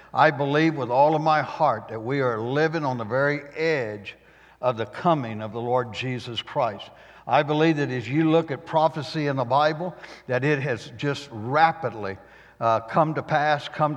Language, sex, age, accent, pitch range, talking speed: English, male, 60-79, American, 125-160 Hz, 190 wpm